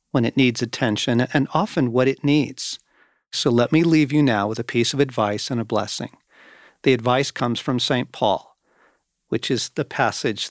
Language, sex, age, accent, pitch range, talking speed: English, male, 50-69, American, 115-145 Hz, 190 wpm